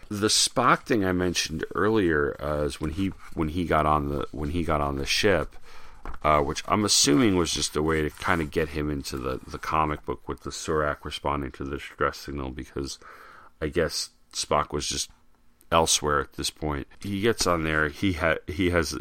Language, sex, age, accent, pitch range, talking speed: English, male, 40-59, American, 75-85 Hz, 205 wpm